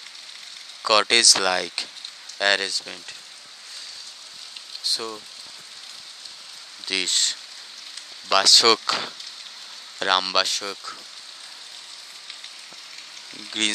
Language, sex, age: Bengali, male, 20-39